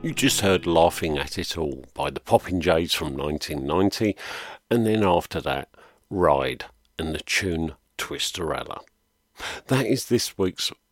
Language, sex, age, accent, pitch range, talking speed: English, male, 50-69, British, 80-110 Hz, 145 wpm